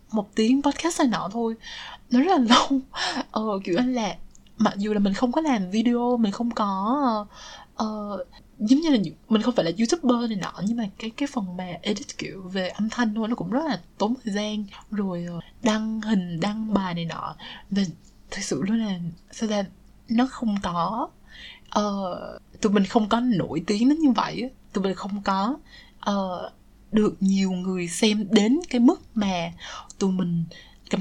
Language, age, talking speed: Vietnamese, 20-39, 190 wpm